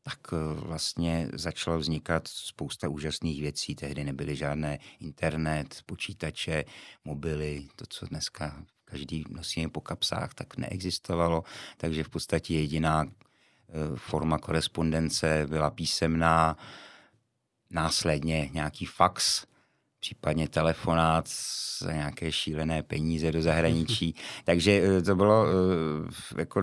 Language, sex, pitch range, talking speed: Czech, male, 80-90 Hz, 100 wpm